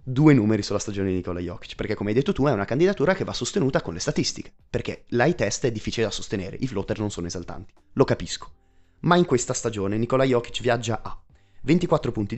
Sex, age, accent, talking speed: male, 30-49, native, 215 wpm